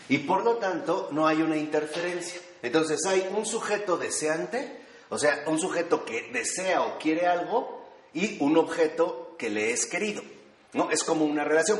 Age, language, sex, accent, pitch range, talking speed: 30-49, Spanish, male, Mexican, 130-185 Hz, 170 wpm